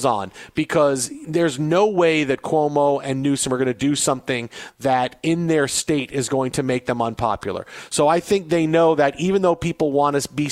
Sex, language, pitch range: male, English, 140-170 Hz